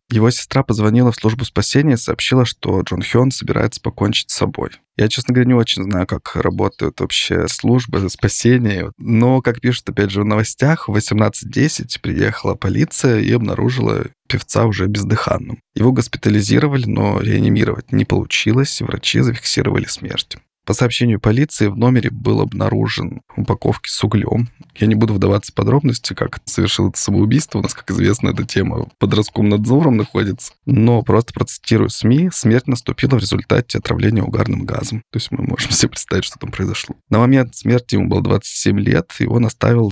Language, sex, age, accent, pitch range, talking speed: Russian, male, 20-39, native, 105-125 Hz, 165 wpm